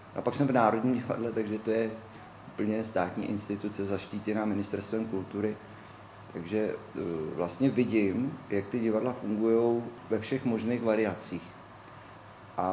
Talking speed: 125 wpm